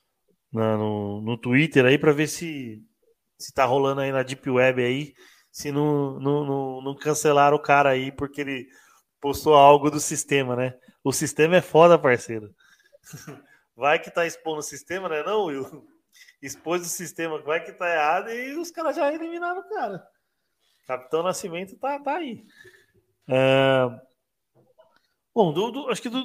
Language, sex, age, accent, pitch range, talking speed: Portuguese, male, 20-39, Brazilian, 135-210 Hz, 165 wpm